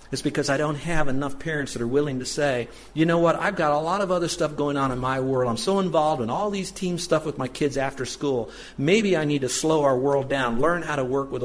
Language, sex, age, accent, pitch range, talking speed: English, male, 50-69, American, 120-150 Hz, 280 wpm